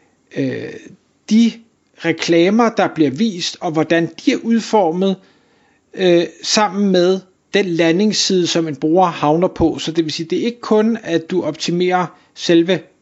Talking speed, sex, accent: 145 wpm, male, native